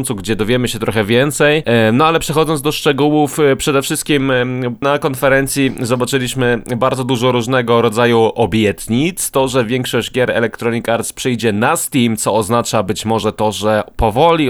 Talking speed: 150 wpm